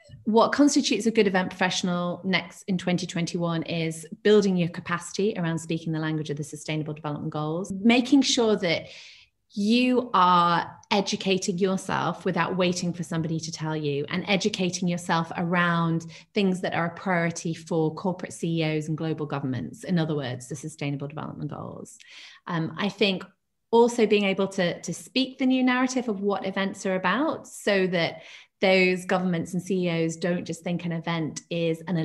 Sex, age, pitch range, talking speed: female, 30-49, 165-205 Hz, 165 wpm